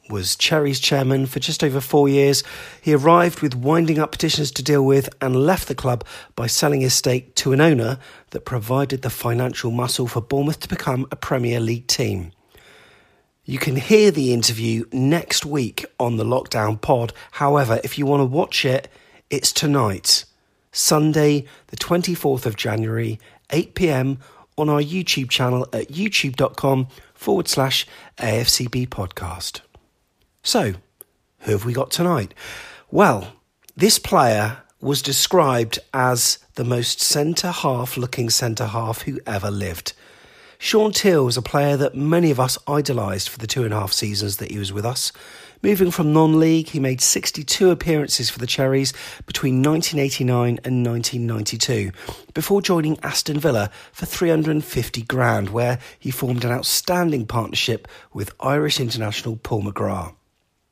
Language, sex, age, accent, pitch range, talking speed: English, male, 40-59, British, 120-150 Hz, 150 wpm